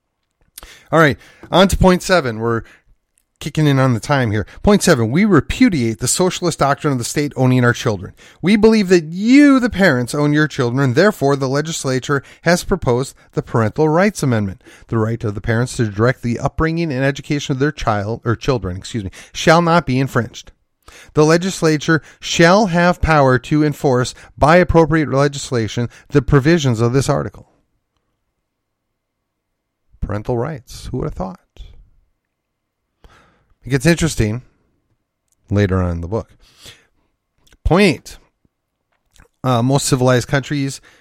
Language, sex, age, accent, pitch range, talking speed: English, male, 30-49, American, 110-150 Hz, 150 wpm